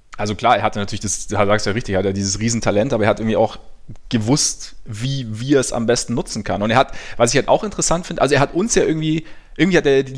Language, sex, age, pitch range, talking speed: German, male, 20-39, 105-125 Hz, 265 wpm